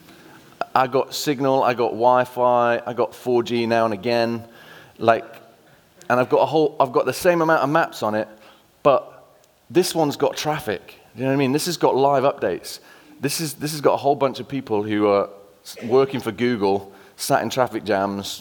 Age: 30-49